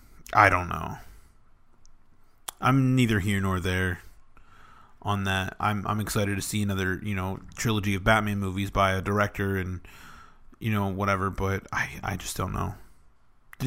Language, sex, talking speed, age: English, male, 160 wpm, 30-49